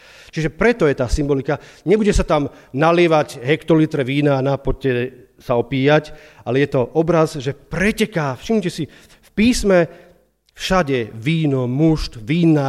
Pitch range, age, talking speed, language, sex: 125-170 Hz, 40-59, 135 wpm, Slovak, male